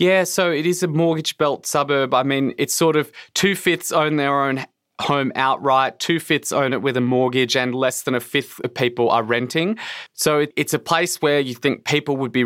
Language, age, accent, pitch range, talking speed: English, 20-39, Australian, 115-135 Hz, 210 wpm